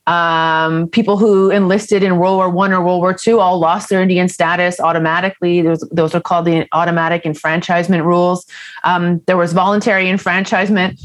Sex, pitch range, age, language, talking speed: female, 175-205 Hz, 30-49, English, 170 wpm